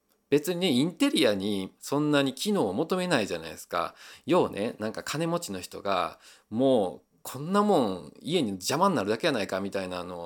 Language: Japanese